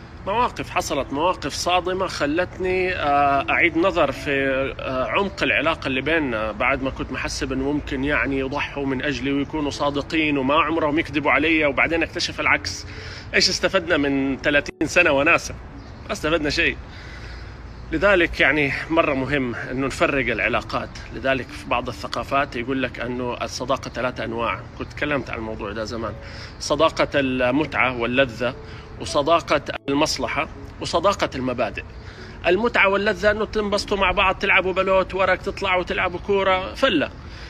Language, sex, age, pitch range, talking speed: Arabic, male, 30-49, 135-185 Hz, 130 wpm